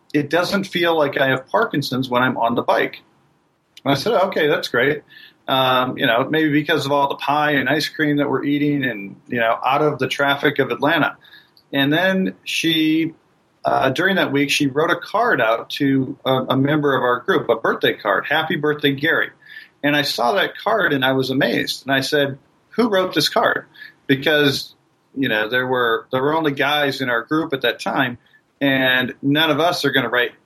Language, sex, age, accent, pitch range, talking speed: English, male, 40-59, American, 130-155 Hz, 210 wpm